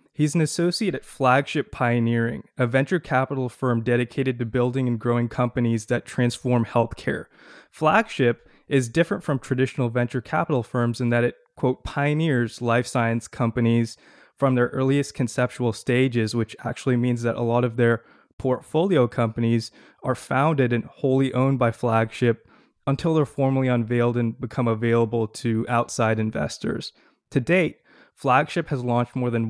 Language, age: English, 20-39